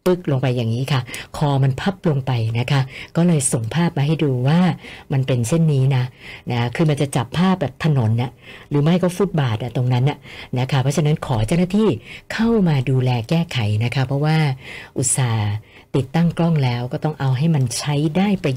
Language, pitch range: Thai, 125-170 Hz